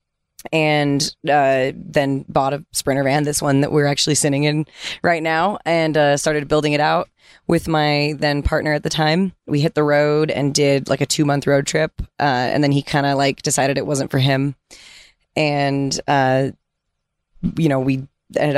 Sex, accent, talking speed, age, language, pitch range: female, American, 185 wpm, 20-39, English, 140-155 Hz